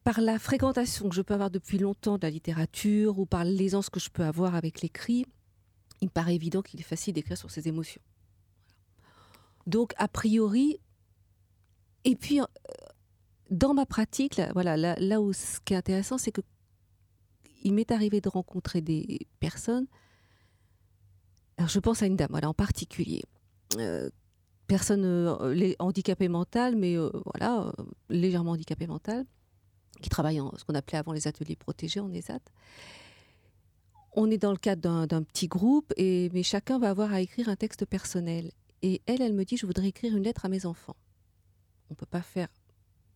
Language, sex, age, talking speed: French, female, 40-59, 170 wpm